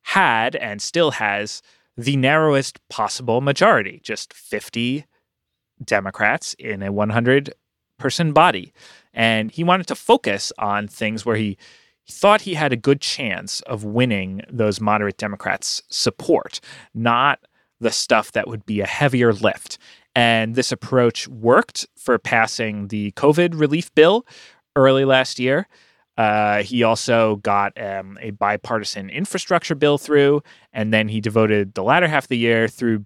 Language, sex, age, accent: English, male, 30-49, American